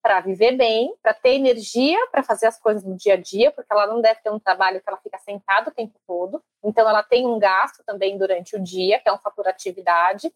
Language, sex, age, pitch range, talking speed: Portuguese, female, 30-49, 215-310 Hz, 245 wpm